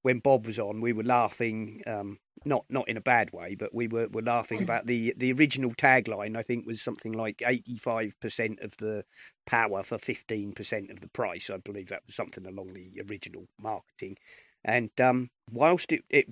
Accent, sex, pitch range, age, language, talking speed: British, male, 105-125 Hz, 40-59, English, 200 wpm